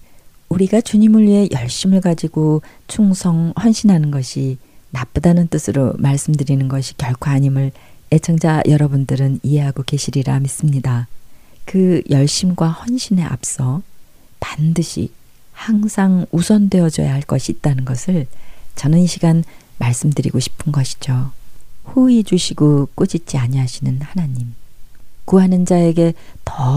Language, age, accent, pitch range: Korean, 40-59, native, 130-170 Hz